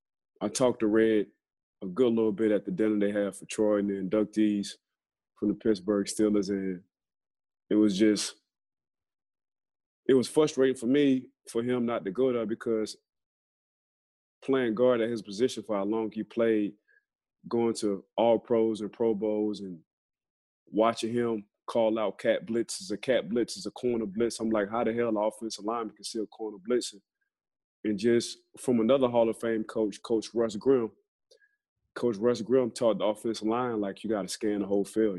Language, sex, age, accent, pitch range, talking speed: English, male, 20-39, American, 105-120 Hz, 185 wpm